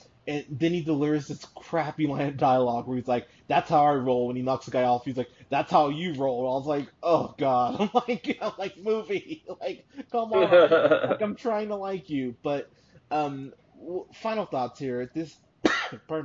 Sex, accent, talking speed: male, American, 205 wpm